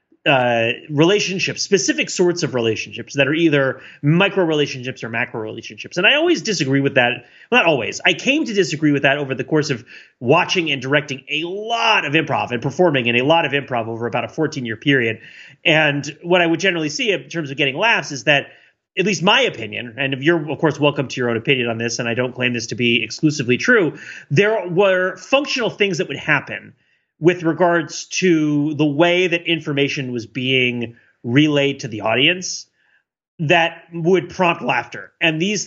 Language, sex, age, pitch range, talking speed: English, male, 30-49, 130-180 Hz, 190 wpm